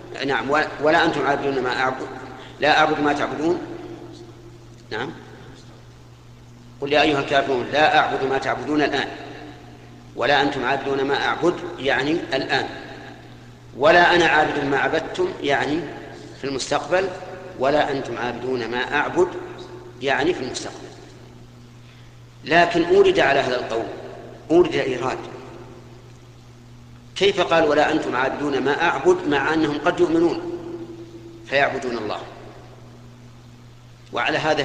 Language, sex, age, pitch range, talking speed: Arabic, male, 50-69, 120-145 Hz, 115 wpm